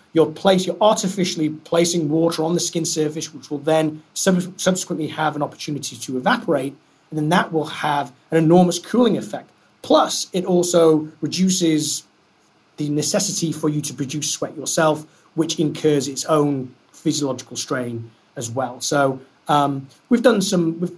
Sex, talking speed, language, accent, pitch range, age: male, 155 wpm, English, British, 135-165 Hz, 30-49